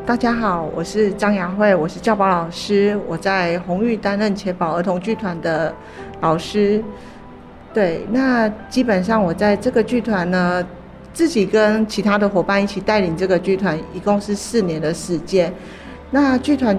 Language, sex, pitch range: Chinese, female, 180-225 Hz